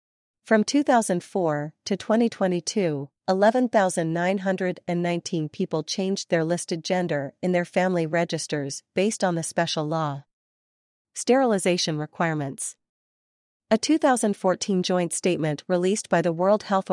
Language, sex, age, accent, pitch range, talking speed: English, female, 40-59, American, 165-195 Hz, 105 wpm